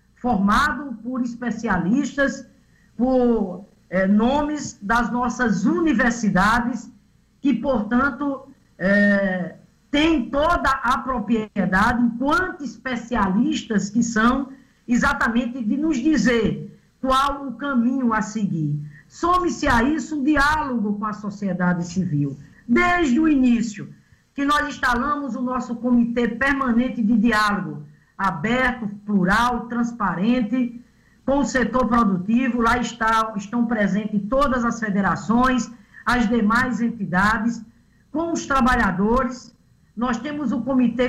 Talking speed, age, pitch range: 105 wpm, 50-69, 215-265 Hz